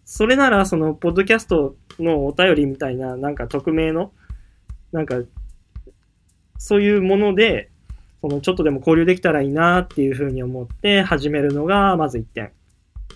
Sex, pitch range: male, 130-175 Hz